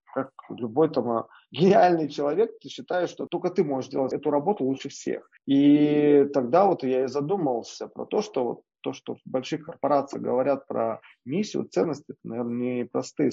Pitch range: 125-155 Hz